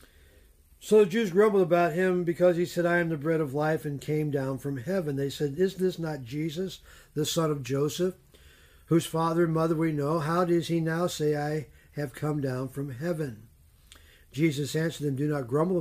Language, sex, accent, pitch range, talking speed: English, male, American, 125-165 Hz, 200 wpm